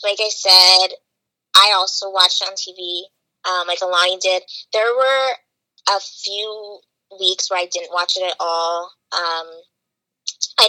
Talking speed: 150 wpm